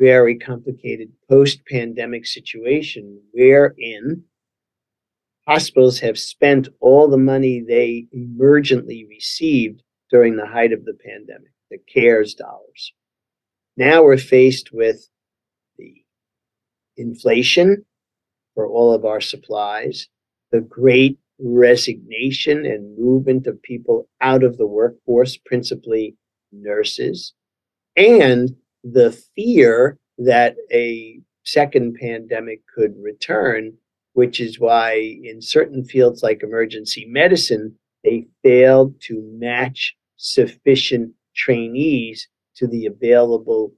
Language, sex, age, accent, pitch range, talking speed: English, male, 50-69, American, 115-140 Hz, 100 wpm